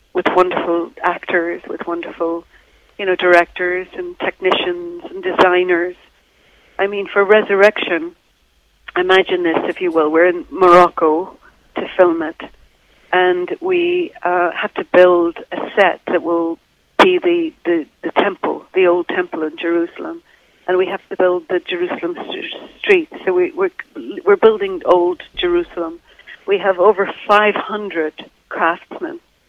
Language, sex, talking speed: English, female, 140 wpm